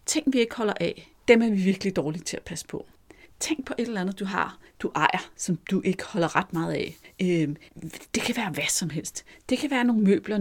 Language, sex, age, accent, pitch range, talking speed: Danish, female, 40-59, native, 175-225 Hz, 235 wpm